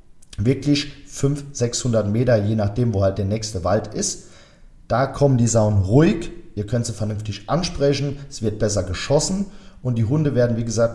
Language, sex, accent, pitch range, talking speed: German, male, German, 105-140 Hz, 175 wpm